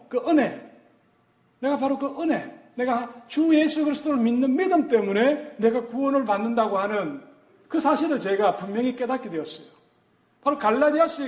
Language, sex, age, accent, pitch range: Korean, male, 40-59, native, 225-280 Hz